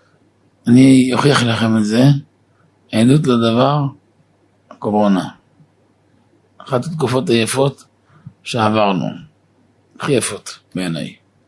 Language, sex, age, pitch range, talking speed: Hebrew, male, 50-69, 110-130 Hz, 80 wpm